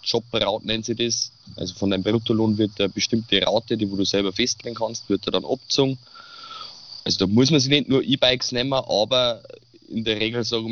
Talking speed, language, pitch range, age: 205 wpm, German, 100-125 Hz, 20-39